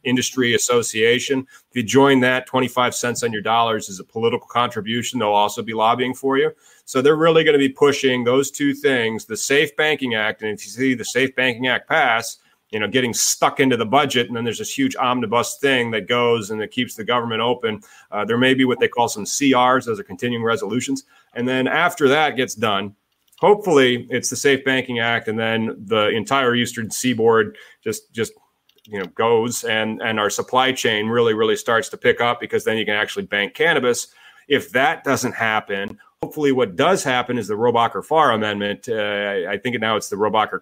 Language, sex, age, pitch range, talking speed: English, male, 30-49, 110-135 Hz, 205 wpm